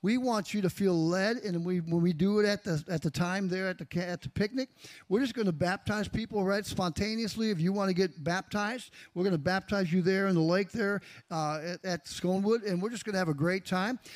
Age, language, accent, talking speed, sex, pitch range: 50-69, English, American, 255 wpm, male, 180-220 Hz